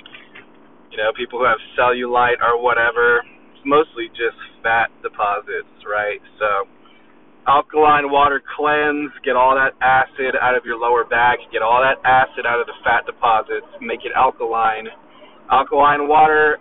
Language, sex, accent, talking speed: English, male, American, 150 wpm